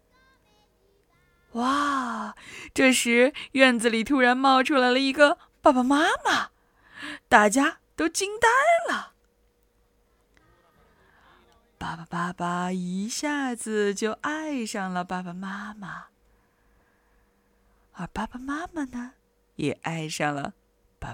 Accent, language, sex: native, Chinese, female